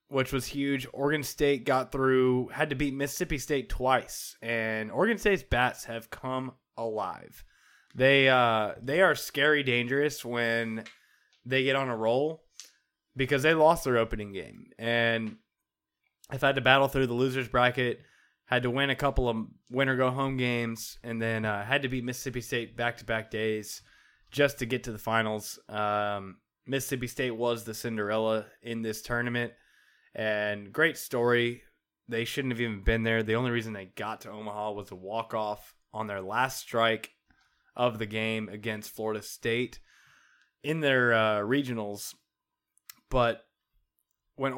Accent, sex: American, male